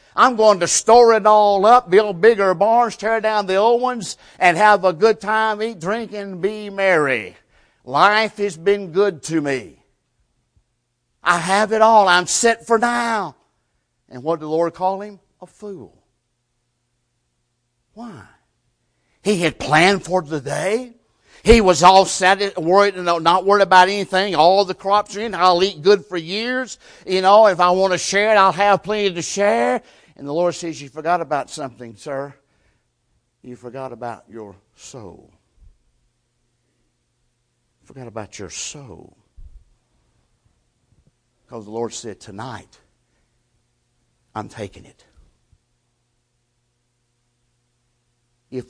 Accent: American